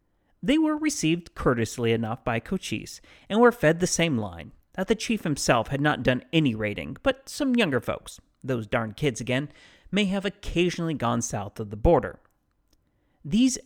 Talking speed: 170 wpm